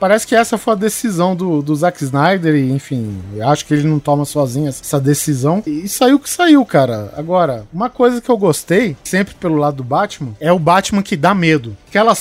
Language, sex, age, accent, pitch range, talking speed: Portuguese, male, 20-39, Brazilian, 155-215 Hz, 220 wpm